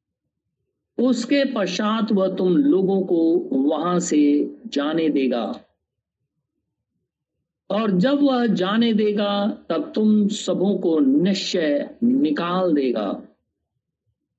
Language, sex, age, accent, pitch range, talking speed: Hindi, male, 50-69, native, 185-245 Hz, 90 wpm